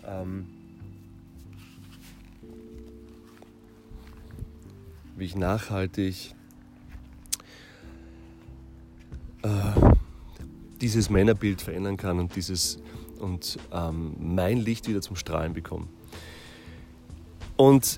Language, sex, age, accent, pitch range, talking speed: German, male, 30-49, German, 85-110 Hz, 55 wpm